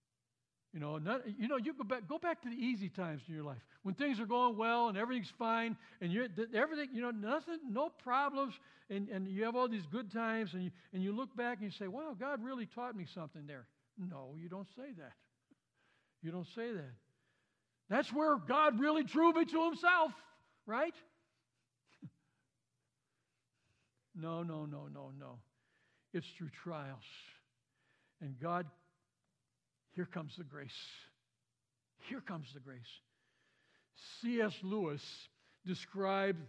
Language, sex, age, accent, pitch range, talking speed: English, male, 60-79, American, 150-235 Hz, 160 wpm